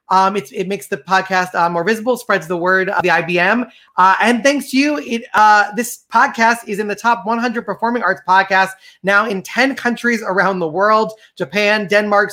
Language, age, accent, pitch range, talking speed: English, 30-49, American, 185-230 Hz, 190 wpm